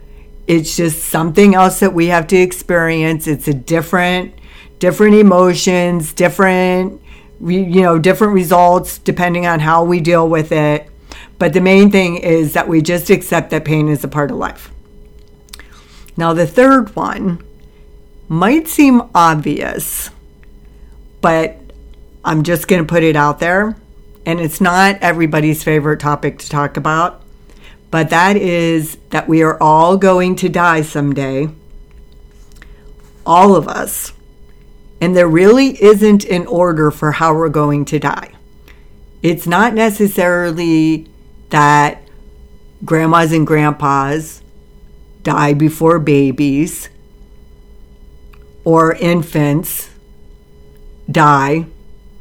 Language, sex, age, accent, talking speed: English, female, 50-69, American, 120 wpm